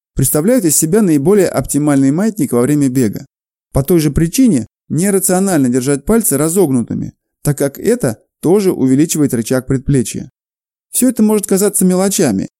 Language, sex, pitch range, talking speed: Russian, male, 140-190 Hz, 140 wpm